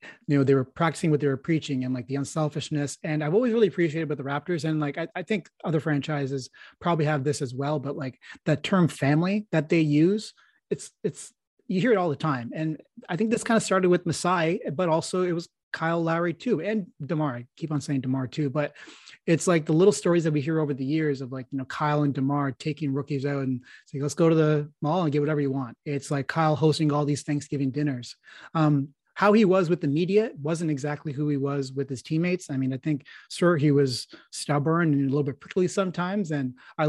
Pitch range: 140-165 Hz